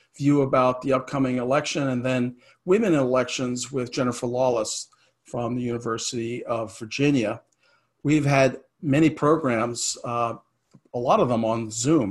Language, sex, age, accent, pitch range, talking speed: English, male, 50-69, American, 125-145 Hz, 140 wpm